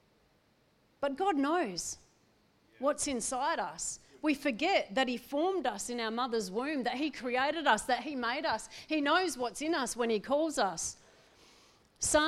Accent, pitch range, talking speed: Australian, 235-295 Hz, 165 wpm